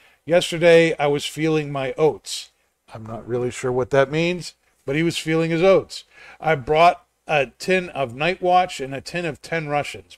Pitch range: 130-170 Hz